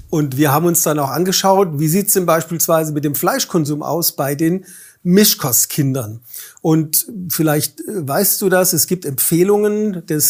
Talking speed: 155 wpm